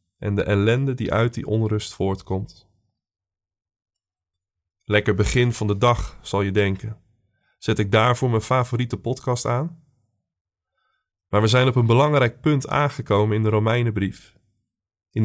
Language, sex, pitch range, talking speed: Dutch, male, 105-130 Hz, 140 wpm